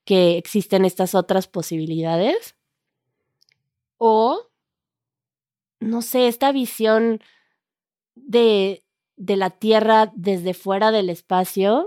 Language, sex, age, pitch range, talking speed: Spanish, female, 20-39, 175-210 Hz, 90 wpm